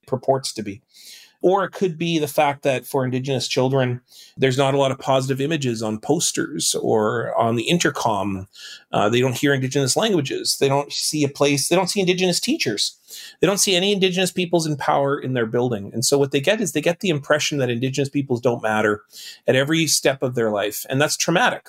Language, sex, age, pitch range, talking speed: English, male, 40-59, 120-150 Hz, 215 wpm